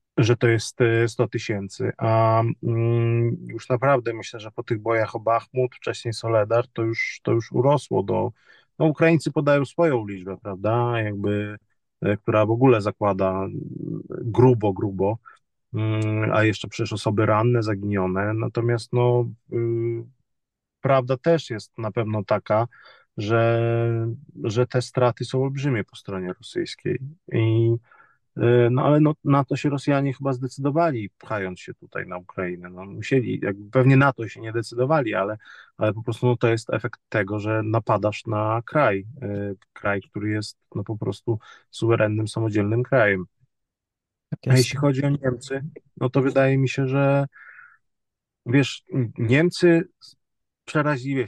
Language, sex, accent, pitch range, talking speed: Polish, male, native, 110-135 Hz, 140 wpm